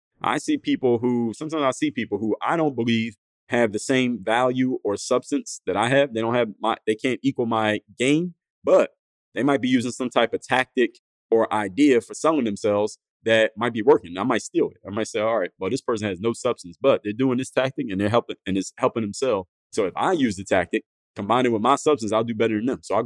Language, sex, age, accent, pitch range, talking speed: English, male, 30-49, American, 95-125 Hz, 245 wpm